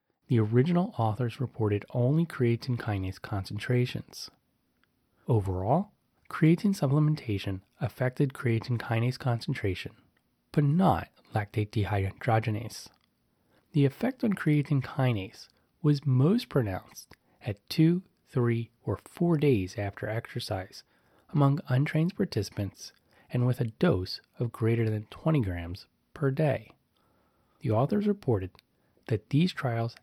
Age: 30-49